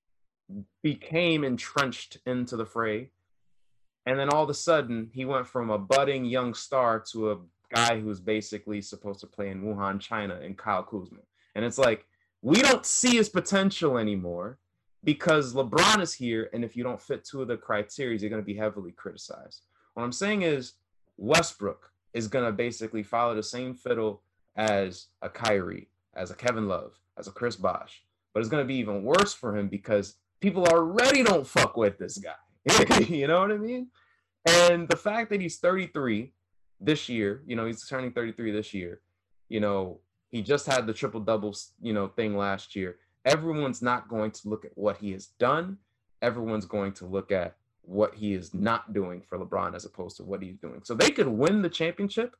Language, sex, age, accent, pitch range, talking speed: English, male, 20-39, American, 100-135 Hz, 190 wpm